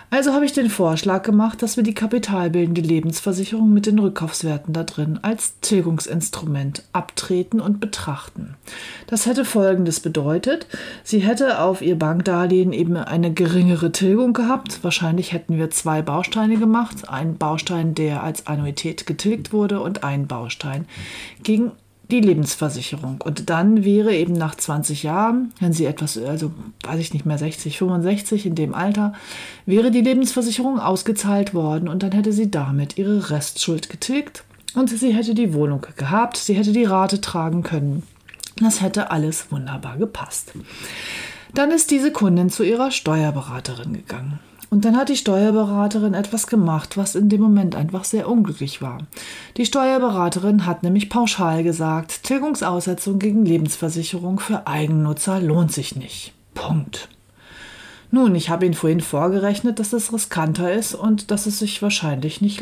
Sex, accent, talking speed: female, German, 150 wpm